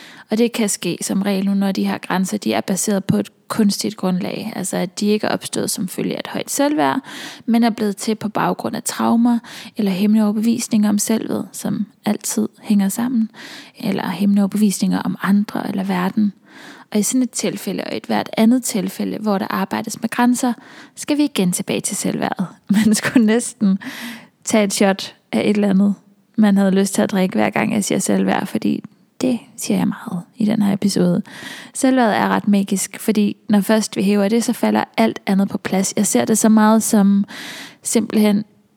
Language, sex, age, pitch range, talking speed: Danish, female, 20-39, 200-230 Hz, 195 wpm